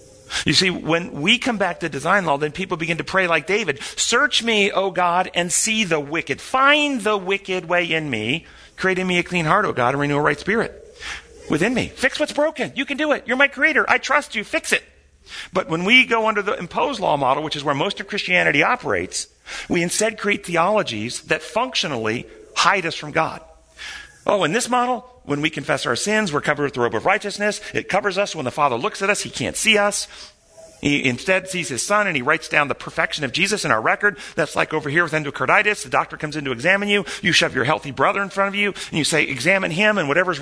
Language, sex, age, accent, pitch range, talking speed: English, male, 40-59, American, 155-210 Hz, 240 wpm